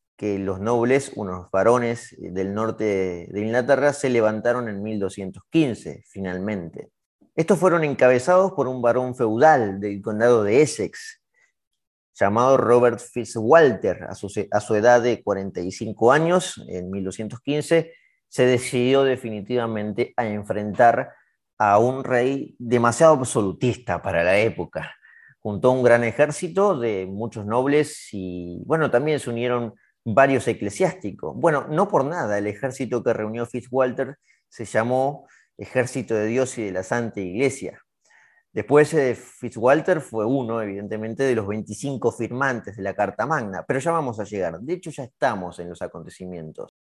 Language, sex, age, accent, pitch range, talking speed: Spanish, male, 30-49, Argentinian, 105-135 Hz, 135 wpm